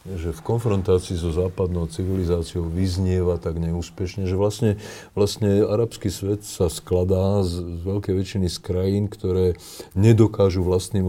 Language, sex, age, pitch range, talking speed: Slovak, male, 40-59, 90-100 Hz, 135 wpm